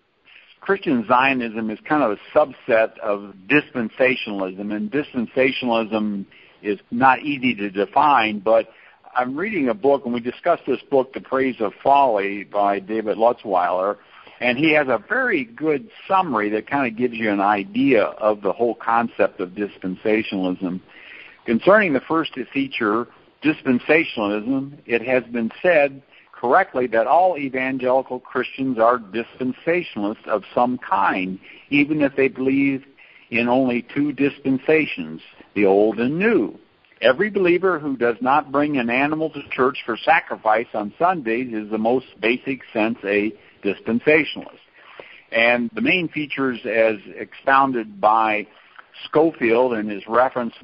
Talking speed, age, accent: 135 wpm, 60-79, American